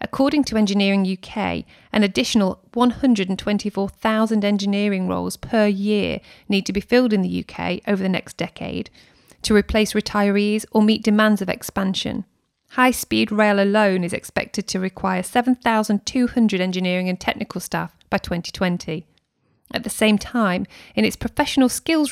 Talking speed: 140 wpm